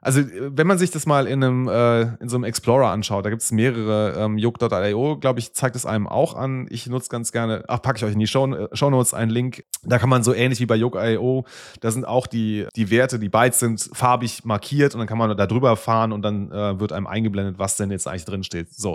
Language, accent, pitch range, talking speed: German, German, 110-140 Hz, 255 wpm